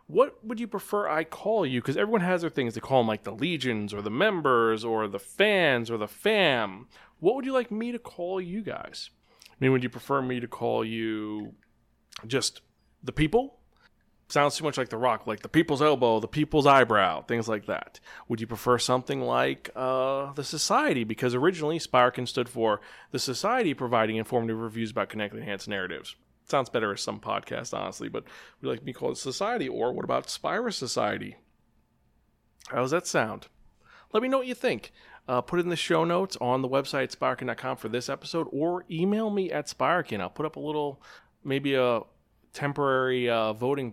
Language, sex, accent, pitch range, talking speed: English, male, American, 115-165 Hz, 195 wpm